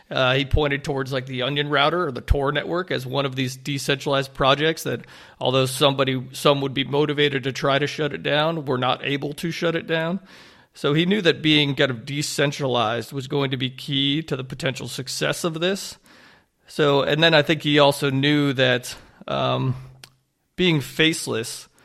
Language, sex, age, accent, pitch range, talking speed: English, male, 40-59, American, 130-150 Hz, 190 wpm